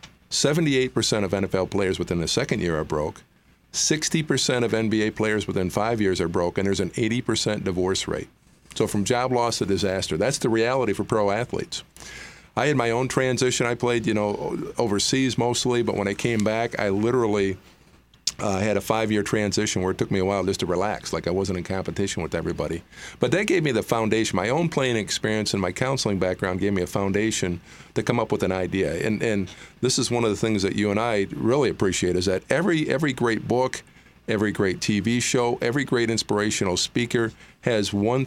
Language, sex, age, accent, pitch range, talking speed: English, male, 50-69, American, 95-120 Hz, 205 wpm